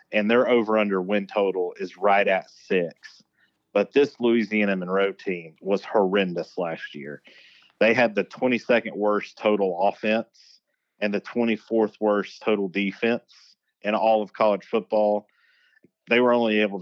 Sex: male